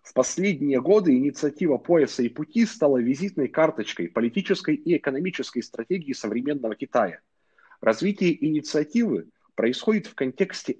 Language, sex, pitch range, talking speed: Russian, male, 125-185 Hz, 115 wpm